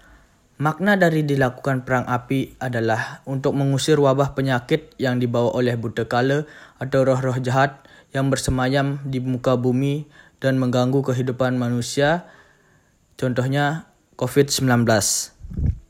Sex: male